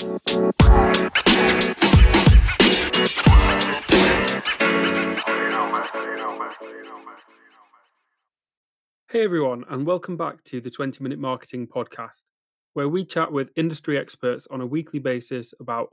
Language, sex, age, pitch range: English, male, 30-49, 125-160 Hz